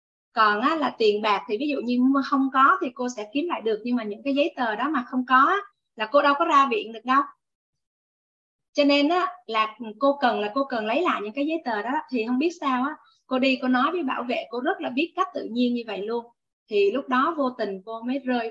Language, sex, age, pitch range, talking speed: Vietnamese, female, 20-39, 220-285 Hz, 255 wpm